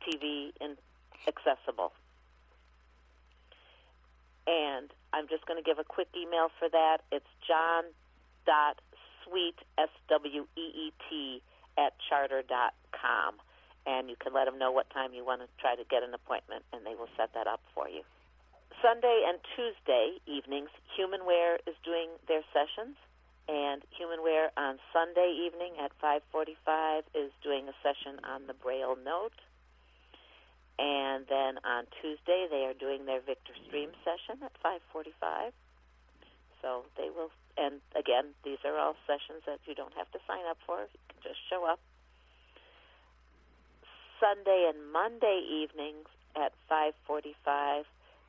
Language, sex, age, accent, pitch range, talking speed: English, female, 50-69, American, 130-170 Hz, 135 wpm